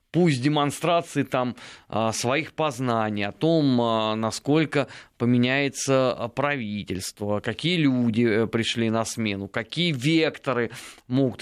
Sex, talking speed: male, 105 wpm